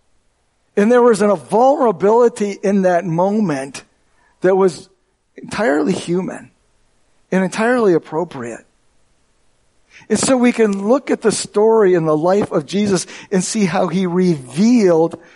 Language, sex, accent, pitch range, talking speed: English, male, American, 185-225 Hz, 135 wpm